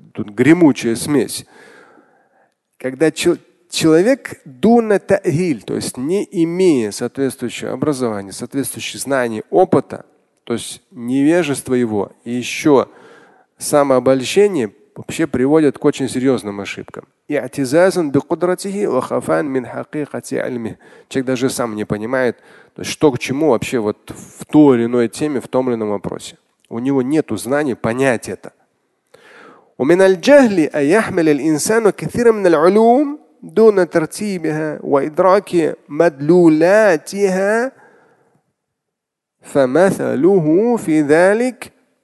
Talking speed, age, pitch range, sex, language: 80 wpm, 30-49, 125-180 Hz, male, Russian